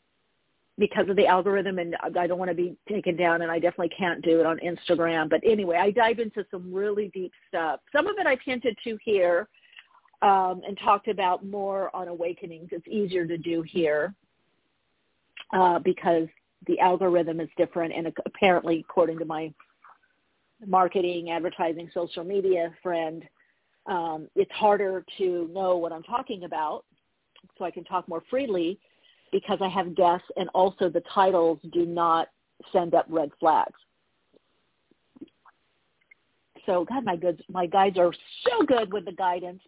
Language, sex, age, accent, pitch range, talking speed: English, female, 50-69, American, 170-205 Hz, 160 wpm